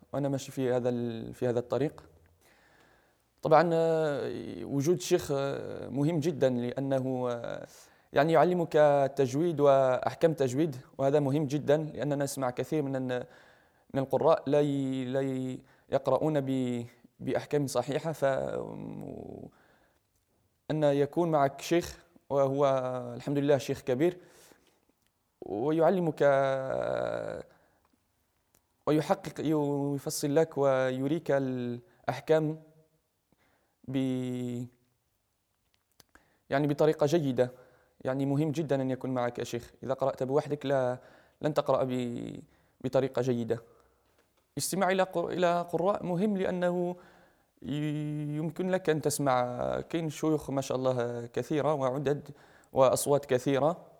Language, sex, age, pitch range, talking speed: Arabic, male, 20-39, 125-155 Hz, 85 wpm